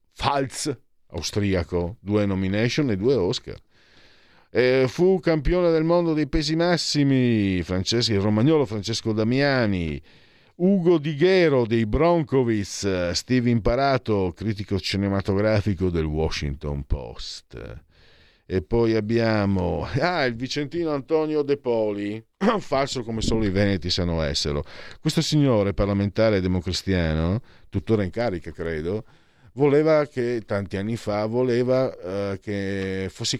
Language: Italian